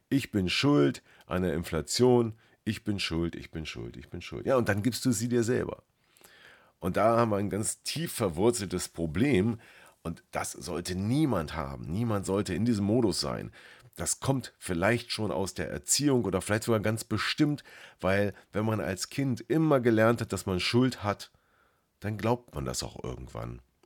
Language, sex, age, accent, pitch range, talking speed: German, male, 40-59, German, 90-120 Hz, 185 wpm